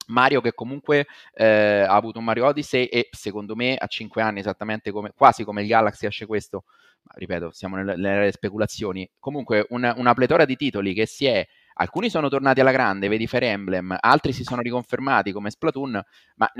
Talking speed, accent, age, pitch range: 190 wpm, native, 30-49, 105-130 Hz